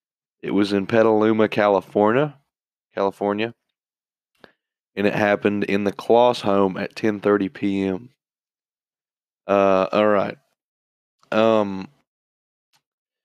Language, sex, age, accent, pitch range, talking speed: English, male, 20-39, American, 100-110 Hz, 90 wpm